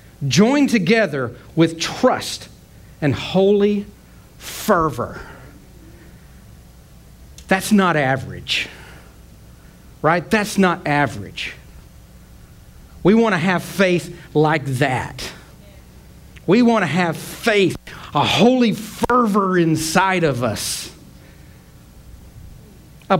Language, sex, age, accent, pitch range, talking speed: English, male, 40-59, American, 125-190 Hz, 85 wpm